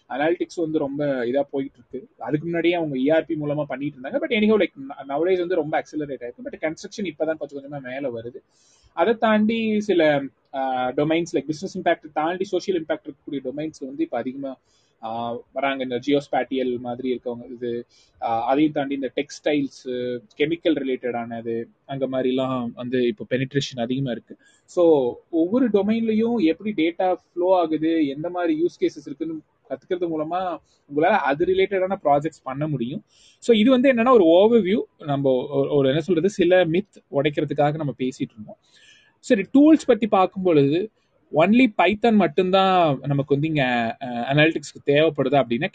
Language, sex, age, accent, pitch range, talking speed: Tamil, male, 20-39, native, 135-190 Hz, 140 wpm